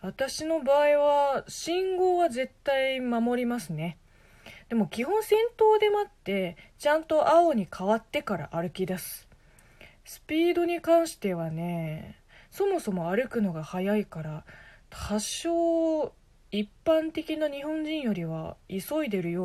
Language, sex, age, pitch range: Japanese, female, 20-39, 160-260 Hz